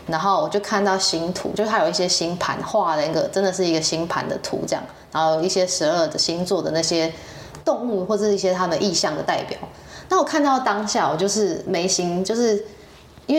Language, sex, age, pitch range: Chinese, female, 20-39, 165-205 Hz